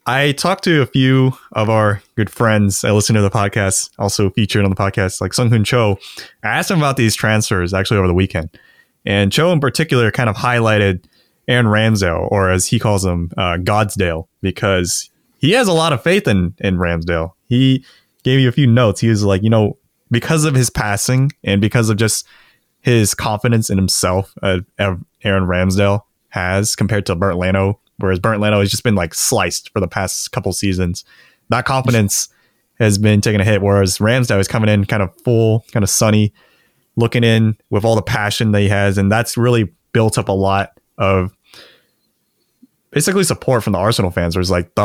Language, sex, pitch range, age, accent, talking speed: English, male, 100-120 Hz, 20-39, American, 195 wpm